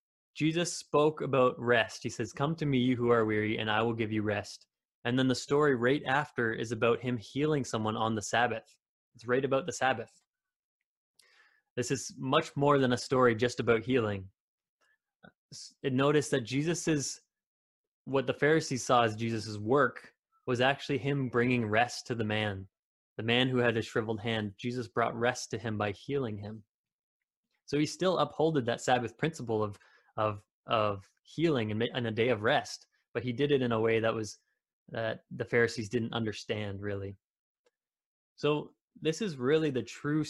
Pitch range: 110-140 Hz